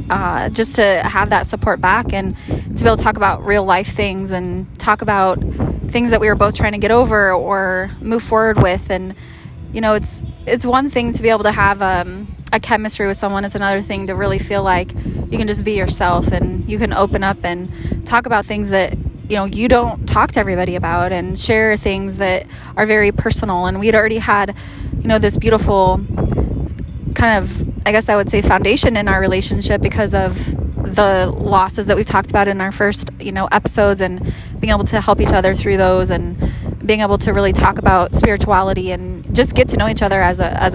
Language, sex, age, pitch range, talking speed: English, female, 20-39, 190-220 Hz, 215 wpm